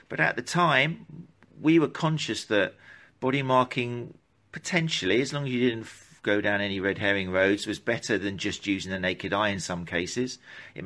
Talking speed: 190 wpm